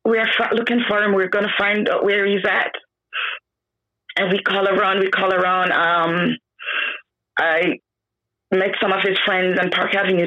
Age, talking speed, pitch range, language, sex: 30-49, 165 wpm, 195-240 Hz, English, female